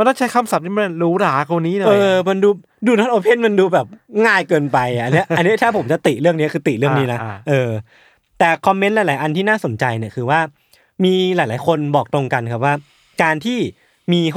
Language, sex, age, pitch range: Thai, male, 20-39, 125-175 Hz